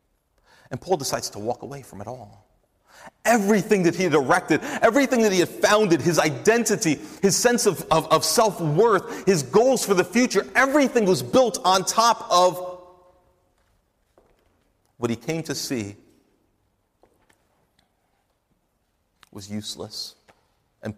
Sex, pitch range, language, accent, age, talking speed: male, 110-180 Hz, English, American, 40-59, 135 wpm